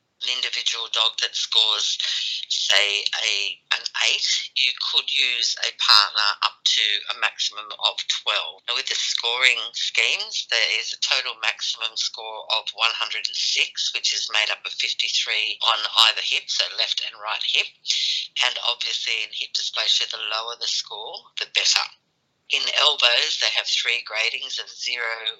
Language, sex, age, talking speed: English, female, 50-69, 155 wpm